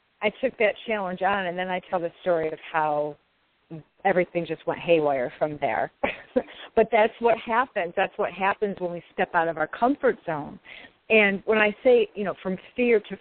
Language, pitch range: English, 170-215 Hz